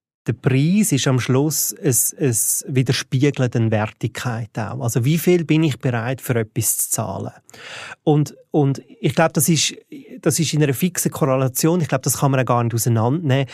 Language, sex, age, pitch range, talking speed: German, male, 30-49, 125-155 Hz, 180 wpm